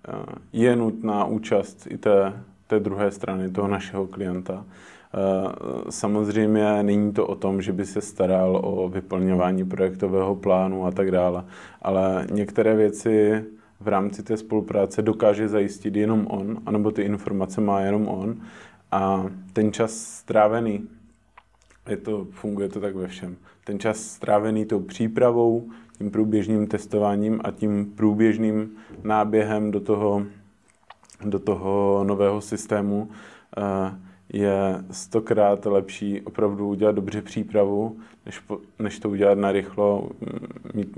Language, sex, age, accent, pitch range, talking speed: Czech, male, 20-39, native, 95-105 Hz, 125 wpm